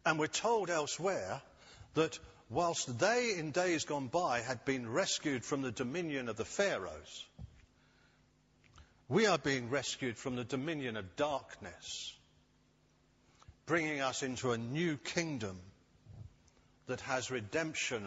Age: 50-69